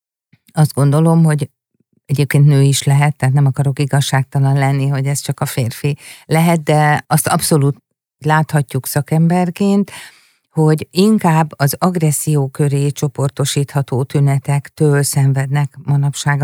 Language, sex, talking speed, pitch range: Hungarian, female, 115 wpm, 140-155 Hz